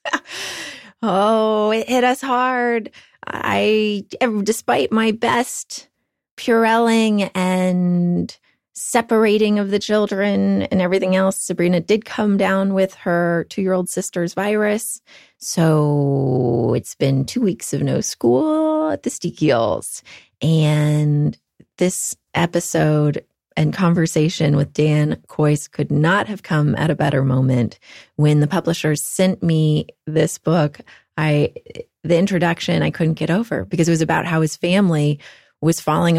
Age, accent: 30-49, American